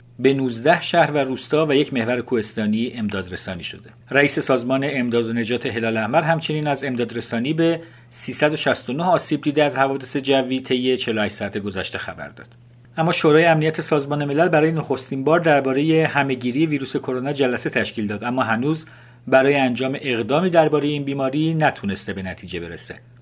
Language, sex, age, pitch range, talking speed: Persian, male, 50-69, 120-150 Hz, 155 wpm